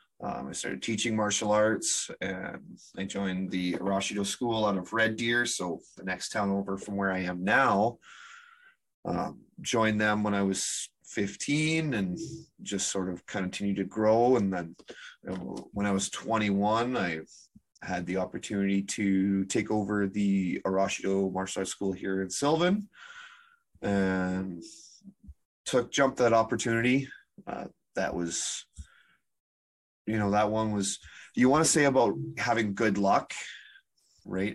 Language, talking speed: English, 150 wpm